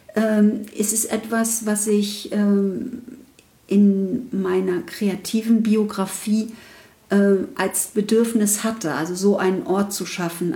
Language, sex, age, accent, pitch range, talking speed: German, female, 50-69, German, 195-230 Hz, 100 wpm